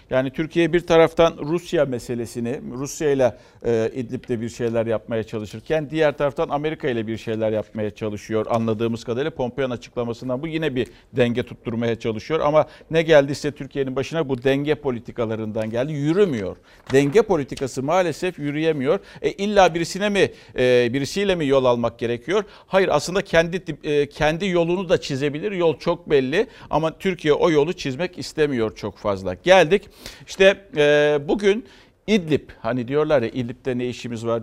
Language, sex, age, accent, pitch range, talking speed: Turkish, male, 50-69, native, 115-165 Hz, 150 wpm